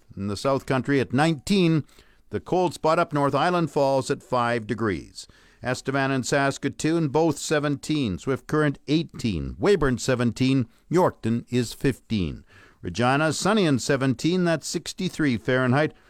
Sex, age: male, 50-69